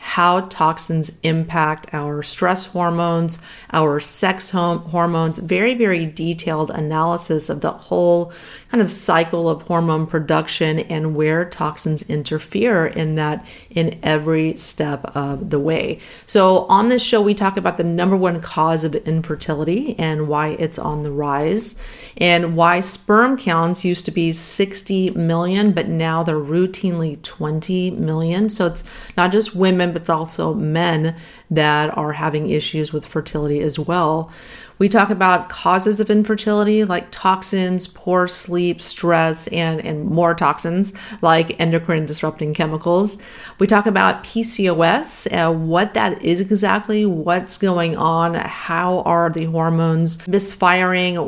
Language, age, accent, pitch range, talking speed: English, 40-59, American, 155-185 Hz, 140 wpm